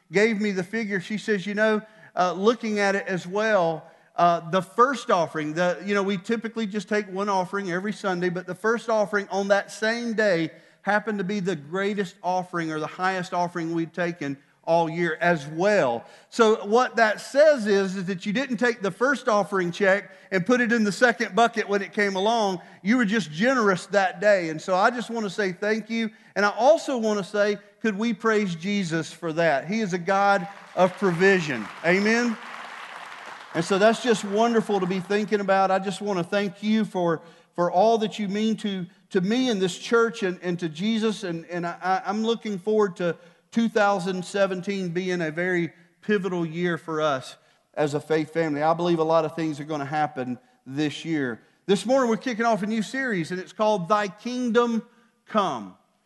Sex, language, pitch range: male, English, 175-220 Hz